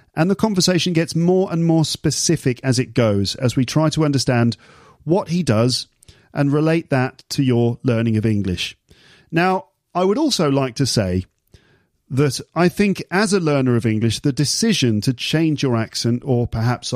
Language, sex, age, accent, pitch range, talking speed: English, male, 40-59, British, 115-155 Hz, 175 wpm